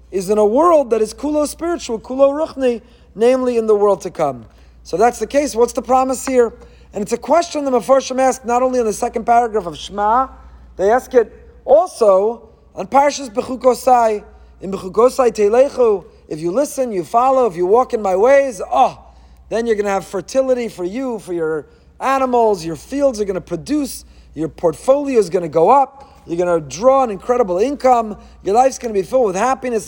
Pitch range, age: 200-265 Hz, 30-49